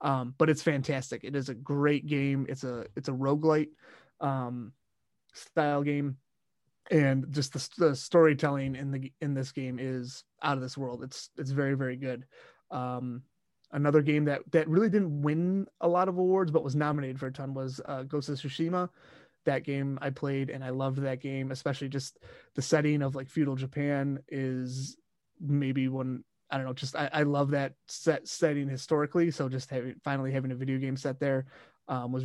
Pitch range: 135-150 Hz